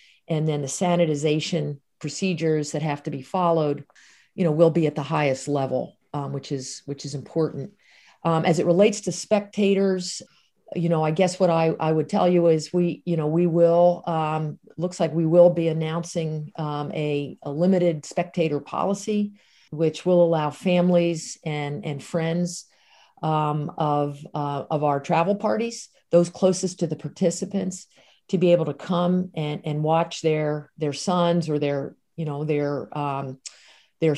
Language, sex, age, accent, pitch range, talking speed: English, female, 50-69, American, 150-175 Hz, 170 wpm